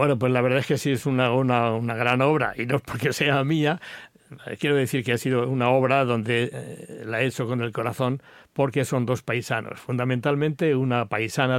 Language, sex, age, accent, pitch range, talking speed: Spanish, male, 60-79, Spanish, 120-145 Hz, 205 wpm